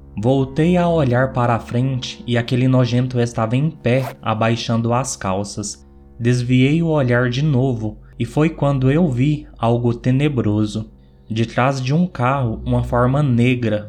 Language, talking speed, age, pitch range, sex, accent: Portuguese, 150 wpm, 20-39, 110-130 Hz, male, Brazilian